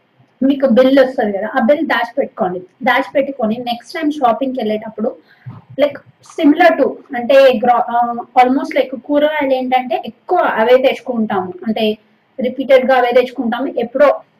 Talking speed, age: 130 wpm, 30-49